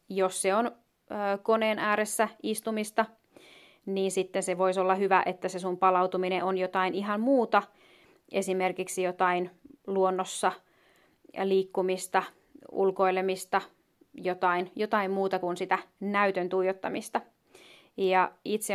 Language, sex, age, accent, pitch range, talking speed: Finnish, female, 30-49, native, 185-215 Hz, 105 wpm